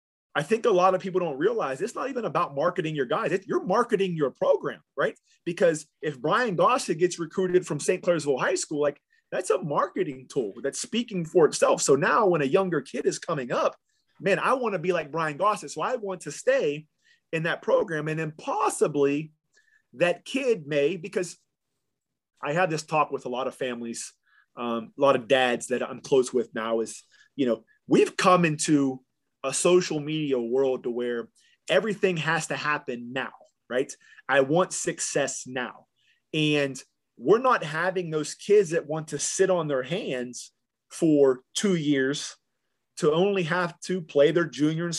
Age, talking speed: 30-49, 185 wpm